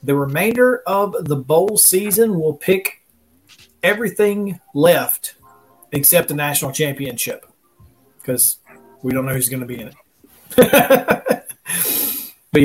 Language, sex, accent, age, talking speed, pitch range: English, male, American, 40-59, 120 wpm, 135-165 Hz